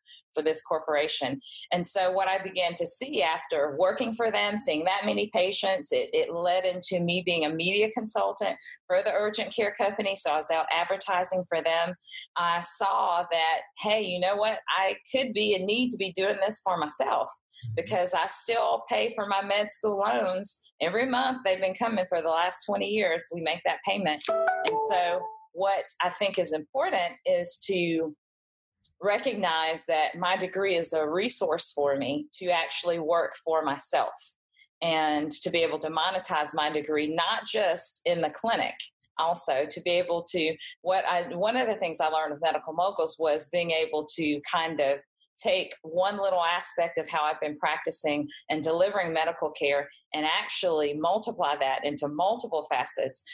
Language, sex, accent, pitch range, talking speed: English, female, American, 155-200 Hz, 180 wpm